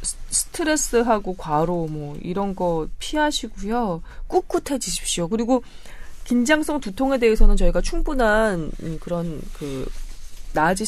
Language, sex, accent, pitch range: Korean, female, native, 160-235 Hz